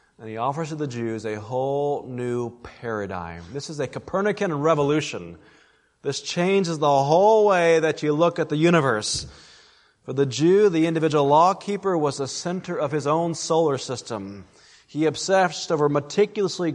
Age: 30-49